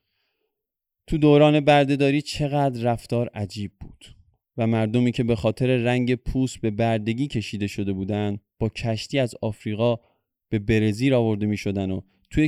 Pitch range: 105-135 Hz